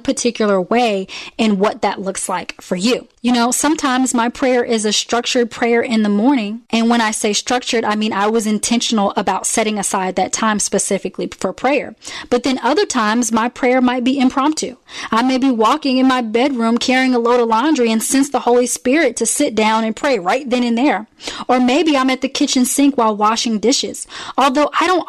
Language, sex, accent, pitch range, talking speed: English, female, American, 215-255 Hz, 210 wpm